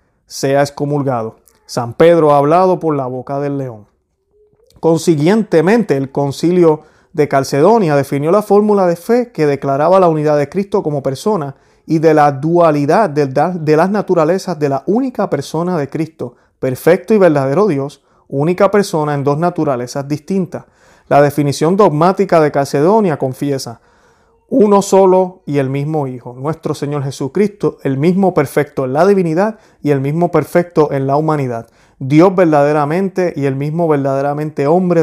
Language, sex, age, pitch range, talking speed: Spanish, male, 30-49, 140-175 Hz, 150 wpm